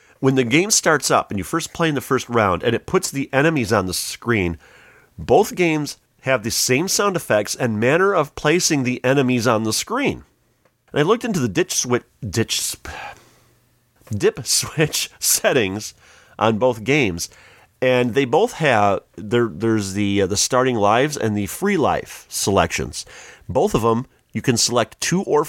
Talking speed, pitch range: 180 wpm, 105-145 Hz